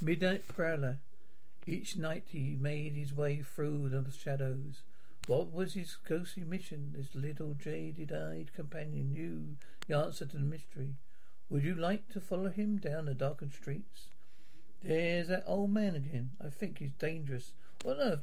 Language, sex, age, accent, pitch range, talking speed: English, male, 60-79, British, 140-180 Hz, 160 wpm